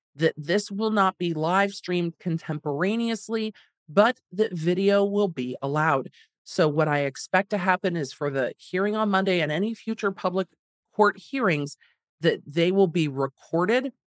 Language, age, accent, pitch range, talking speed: English, 40-59, American, 140-195 Hz, 160 wpm